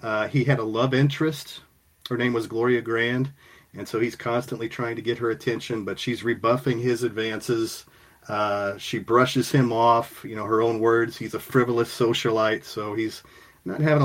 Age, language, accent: 40-59, English, American